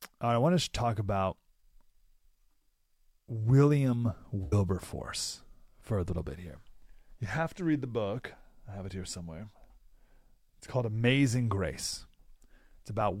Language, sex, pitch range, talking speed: English, male, 105-145 Hz, 135 wpm